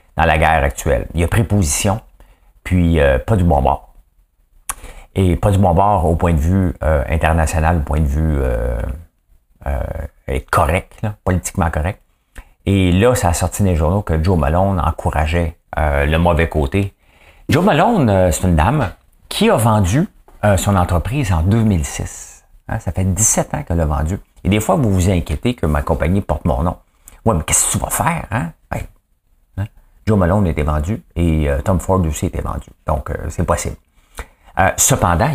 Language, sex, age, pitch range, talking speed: English, male, 50-69, 80-100 Hz, 185 wpm